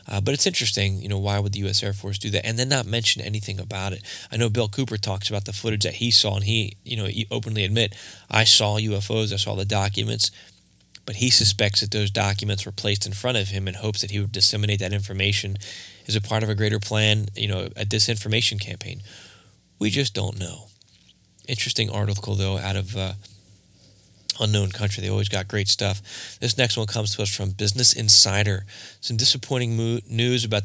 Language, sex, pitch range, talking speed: English, male, 100-115 Hz, 210 wpm